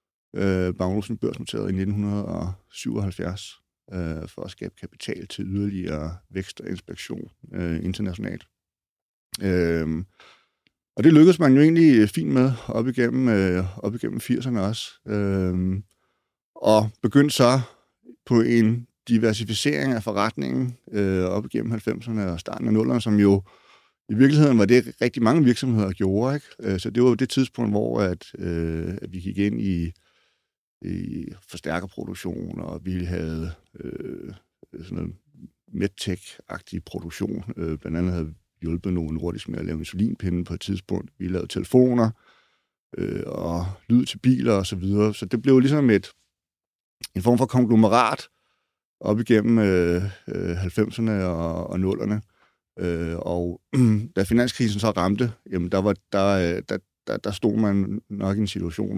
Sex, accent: male, native